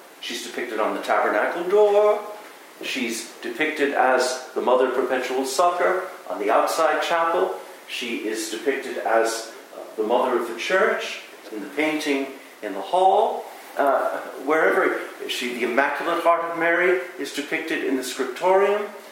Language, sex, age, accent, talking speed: English, male, 50-69, American, 145 wpm